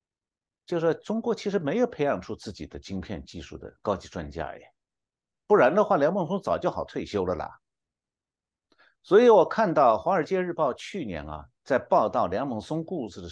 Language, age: Chinese, 60-79